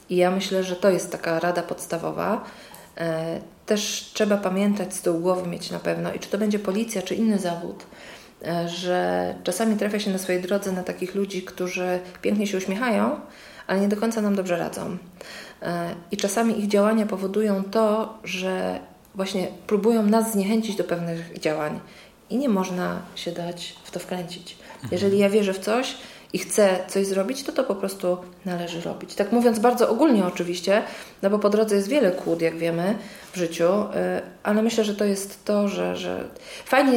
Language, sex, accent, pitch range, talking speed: Polish, female, native, 180-210 Hz, 175 wpm